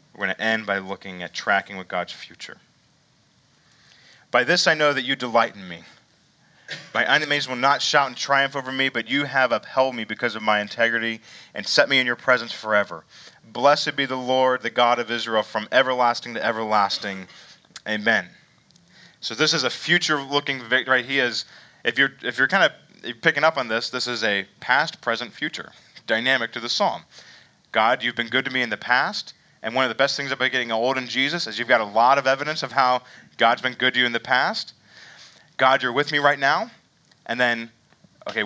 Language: English